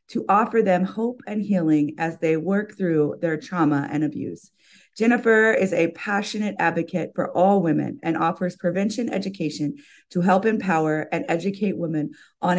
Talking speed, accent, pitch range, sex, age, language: 155 wpm, American, 165-205 Hz, female, 30-49, English